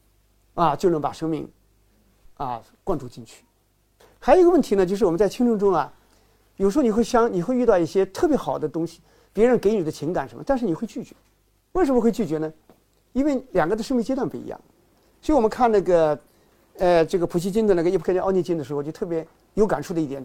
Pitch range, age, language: 155-235 Hz, 50-69, Chinese